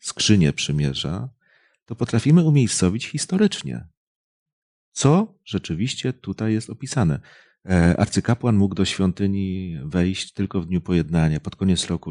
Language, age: Polish, 40-59